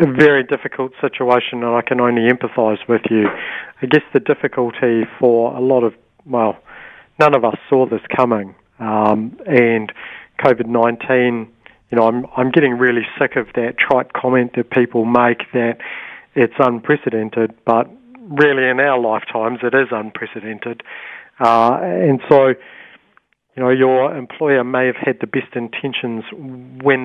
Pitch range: 110-130 Hz